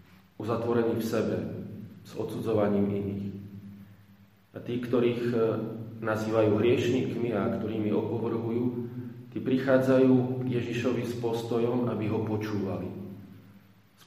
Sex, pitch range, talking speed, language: male, 100-115 Hz, 100 wpm, Slovak